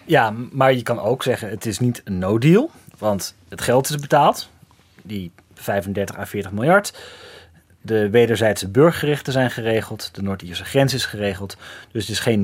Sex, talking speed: male, 170 wpm